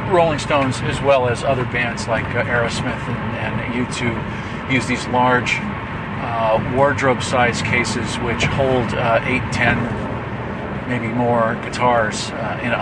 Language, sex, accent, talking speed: English, male, American, 140 wpm